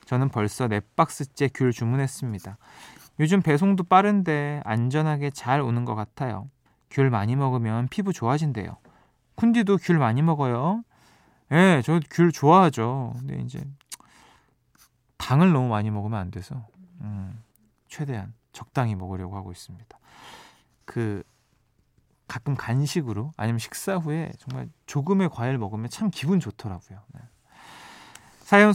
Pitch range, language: 110-160 Hz, Korean